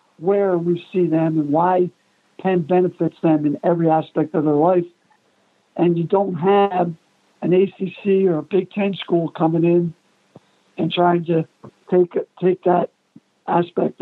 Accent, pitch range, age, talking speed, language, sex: American, 170-195 Hz, 60-79, 150 wpm, English, male